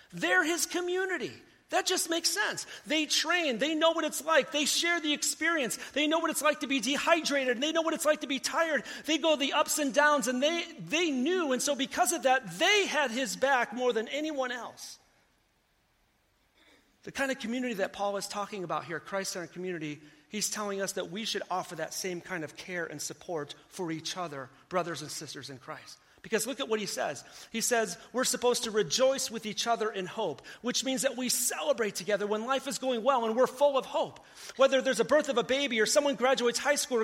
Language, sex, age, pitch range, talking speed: English, male, 40-59, 205-280 Hz, 220 wpm